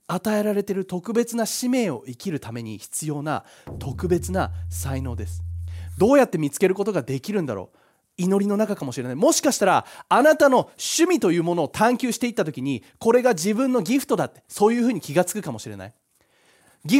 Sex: male